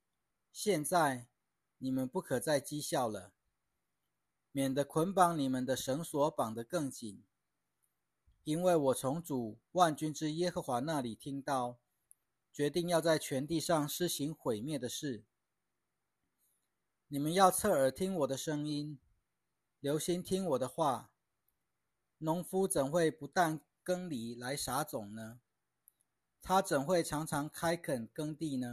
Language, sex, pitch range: Chinese, male, 125-165 Hz